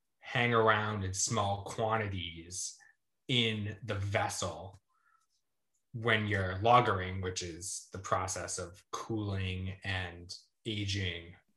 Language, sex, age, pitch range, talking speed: English, male, 20-39, 95-110 Hz, 100 wpm